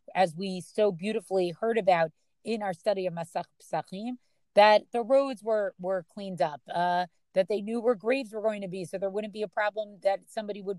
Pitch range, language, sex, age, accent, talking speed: 180-215 Hz, English, female, 30-49, American, 210 wpm